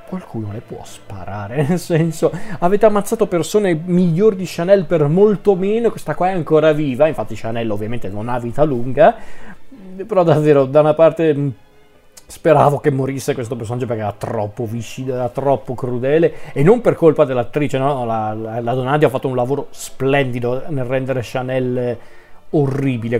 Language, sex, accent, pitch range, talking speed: Italian, male, native, 120-155 Hz, 165 wpm